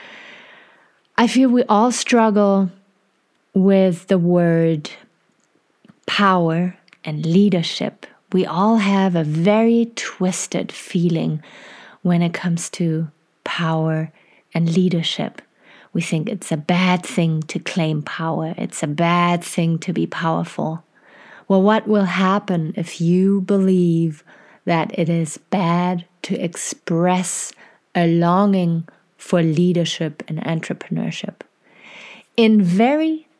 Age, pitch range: 30-49, 165-200 Hz